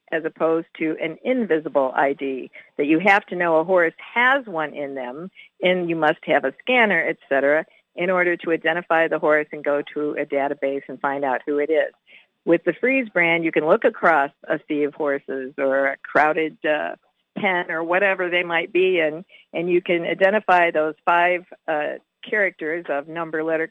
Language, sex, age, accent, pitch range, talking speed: English, female, 50-69, American, 155-185 Hz, 190 wpm